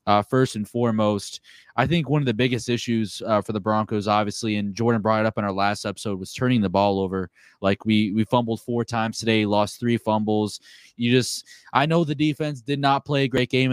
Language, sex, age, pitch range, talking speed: English, male, 20-39, 110-135 Hz, 225 wpm